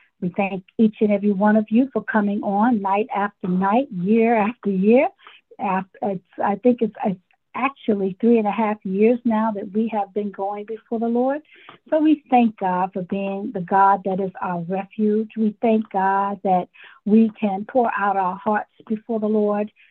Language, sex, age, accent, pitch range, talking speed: English, female, 50-69, American, 195-225 Hz, 180 wpm